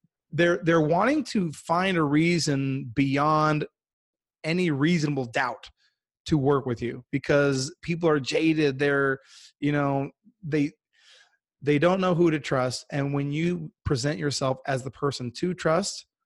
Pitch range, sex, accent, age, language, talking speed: 140-180 Hz, male, American, 30-49, English, 145 wpm